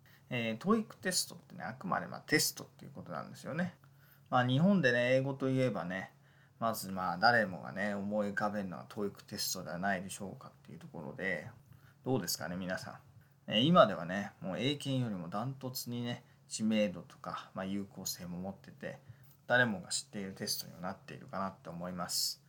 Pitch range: 105-140 Hz